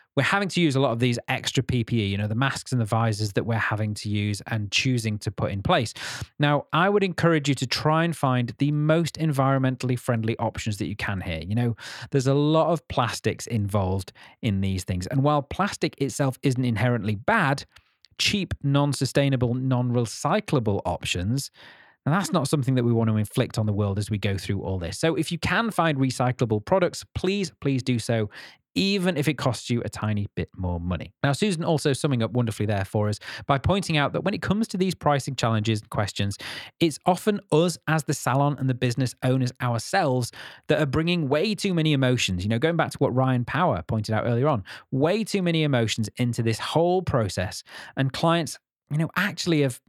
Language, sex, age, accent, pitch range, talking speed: English, male, 30-49, British, 110-155 Hz, 210 wpm